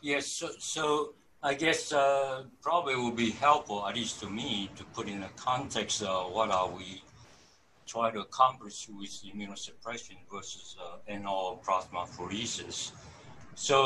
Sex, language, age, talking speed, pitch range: male, English, 60-79, 155 wpm, 100-130 Hz